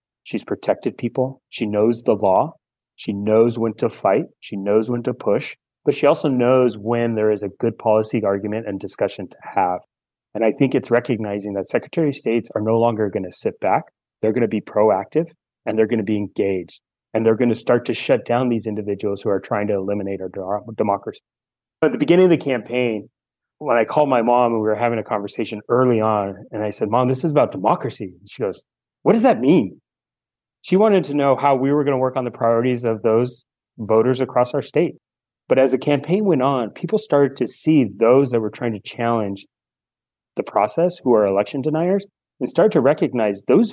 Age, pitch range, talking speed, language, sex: 30-49, 110-140 Hz, 215 wpm, English, male